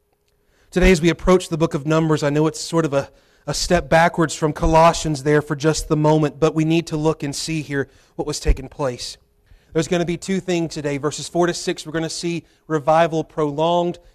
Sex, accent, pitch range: male, American, 150-200 Hz